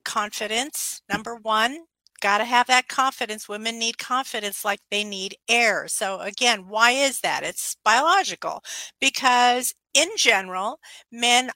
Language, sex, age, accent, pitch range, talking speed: English, female, 50-69, American, 205-255 Hz, 135 wpm